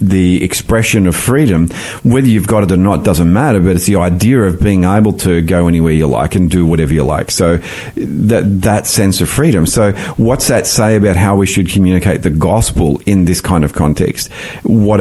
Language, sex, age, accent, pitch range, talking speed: English, male, 40-59, Australian, 95-110 Hz, 210 wpm